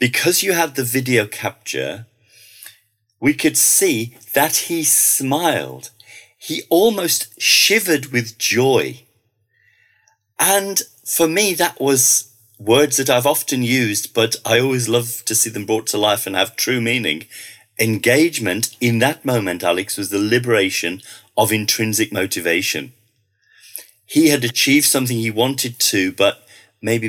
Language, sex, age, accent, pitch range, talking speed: English, male, 40-59, British, 110-140 Hz, 135 wpm